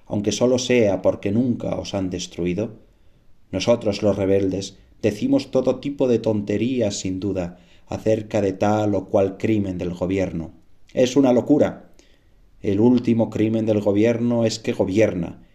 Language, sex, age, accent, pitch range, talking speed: Spanish, male, 30-49, Spanish, 95-110 Hz, 145 wpm